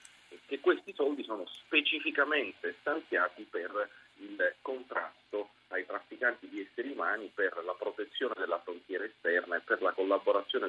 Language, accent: Italian, native